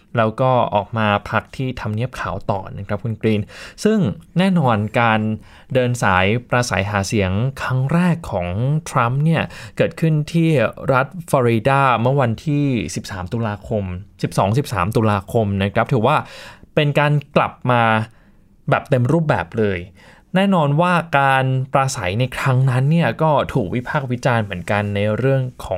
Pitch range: 110-160 Hz